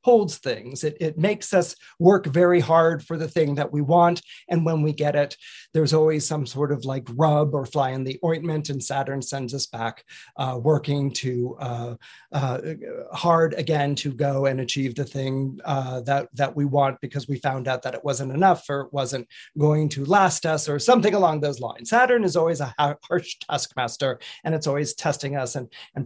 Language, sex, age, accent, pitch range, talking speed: English, male, 40-59, American, 135-170 Hz, 205 wpm